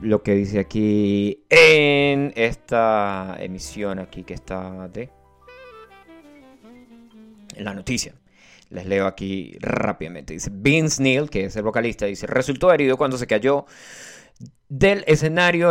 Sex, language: male, Spanish